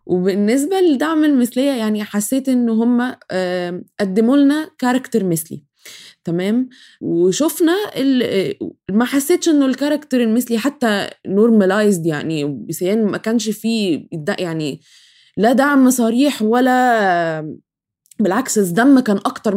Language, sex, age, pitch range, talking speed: Arabic, female, 20-39, 180-240 Hz, 105 wpm